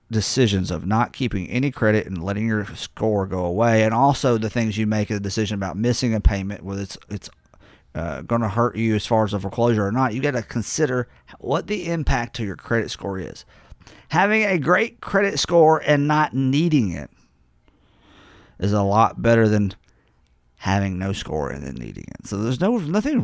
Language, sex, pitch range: English, male, 100-165 Hz